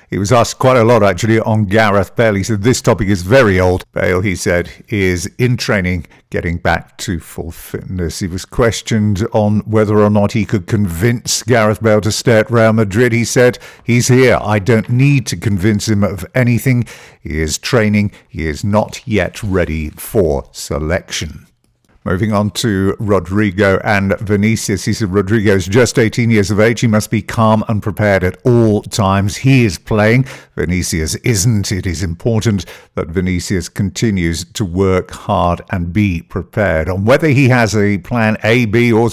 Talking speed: 180 wpm